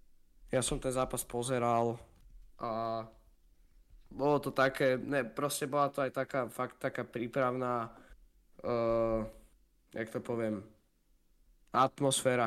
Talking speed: 110 wpm